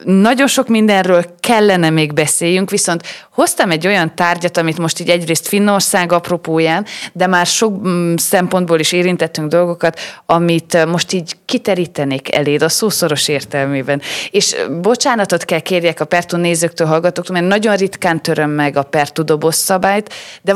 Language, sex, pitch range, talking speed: Hungarian, female, 155-195 Hz, 145 wpm